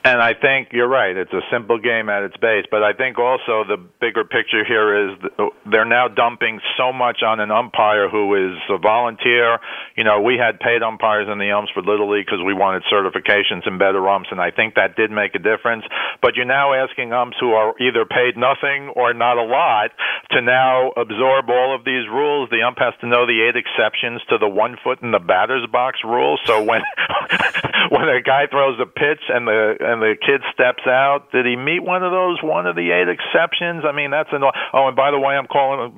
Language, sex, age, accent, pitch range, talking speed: English, male, 50-69, American, 110-135 Hz, 225 wpm